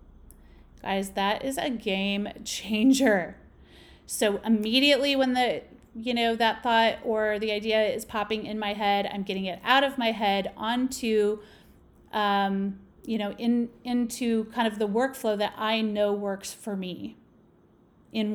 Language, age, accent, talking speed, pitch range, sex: English, 30-49, American, 150 wpm, 200-240 Hz, female